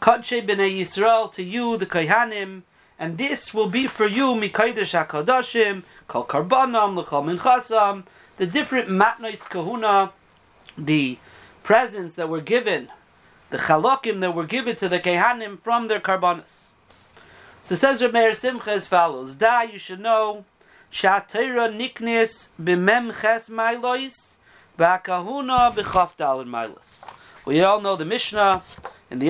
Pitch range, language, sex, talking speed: 180-230 Hz, English, male, 125 wpm